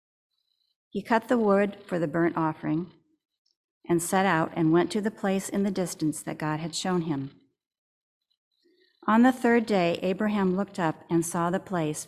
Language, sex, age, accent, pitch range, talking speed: English, female, 50-69, American, 155-210 Hz, 175 wpm